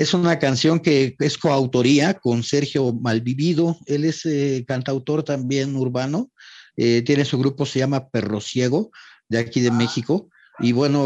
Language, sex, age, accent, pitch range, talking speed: English, male, 40-59, Mexican, 125-155 Hz, 155 wpm